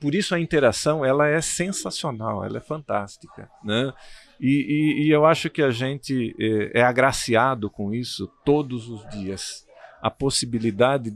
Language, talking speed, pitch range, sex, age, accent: Portuguese, 150 wpm, 115-150 Hz, male, 50-69, Brazilian